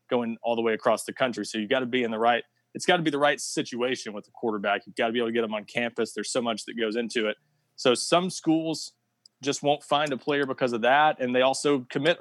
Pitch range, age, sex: 115-140 Hz, 20-39, male